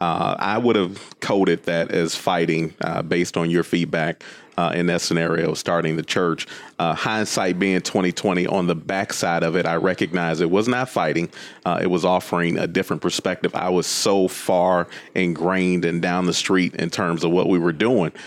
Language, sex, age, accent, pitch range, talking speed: English, male, 30-49, American, 85-100 Hz, 190 wpm